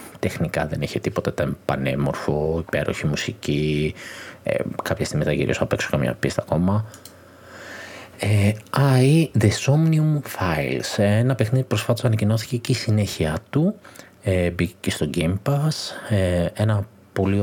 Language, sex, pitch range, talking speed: Greek, male, 90-120 Hz, 140 wpm